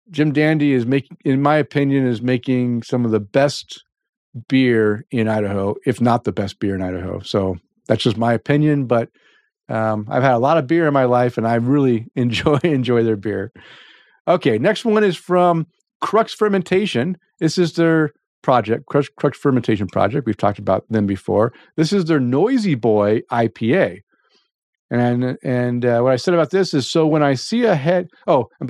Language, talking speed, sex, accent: English, 190 wpm, male, American